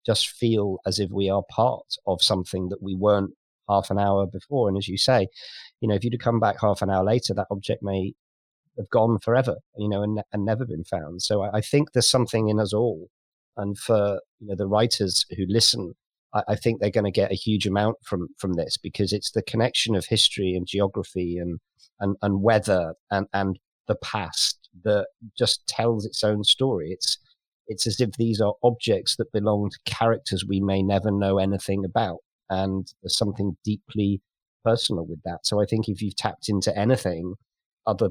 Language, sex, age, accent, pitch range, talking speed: English, male, 40-59, British, 95-110 Hz, 200 wpm